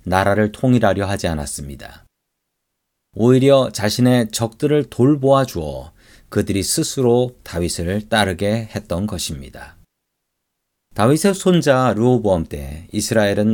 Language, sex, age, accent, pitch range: Korean, male, 40-59, native, 95-135 Hz